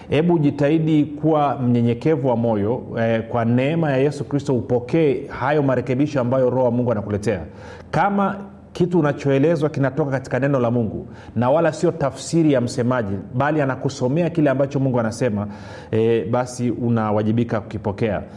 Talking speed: 145 wpm